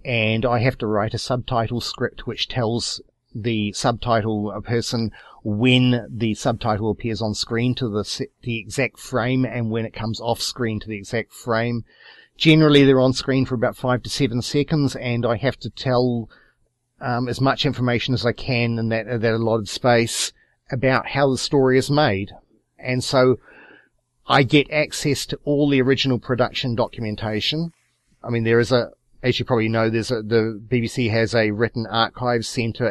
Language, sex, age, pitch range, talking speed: English, male, 40-59, 110-130 Hz, 175 wpm